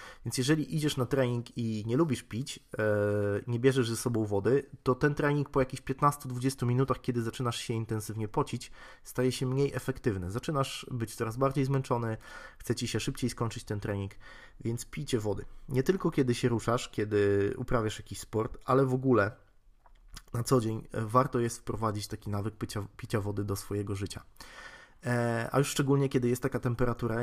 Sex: male